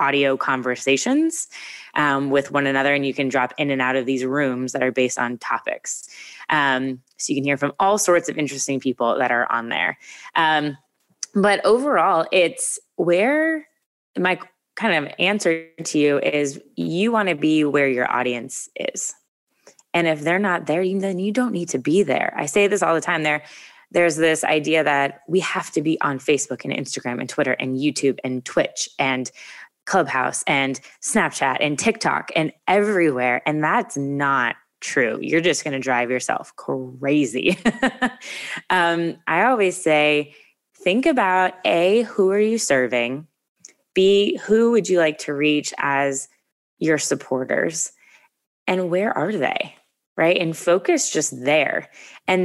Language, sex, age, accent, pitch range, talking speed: English, female, 20-39, American, 140-185 Hz, 165 wpm